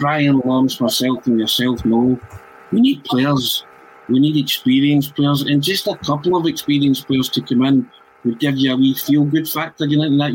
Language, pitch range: English, 125-145 Hz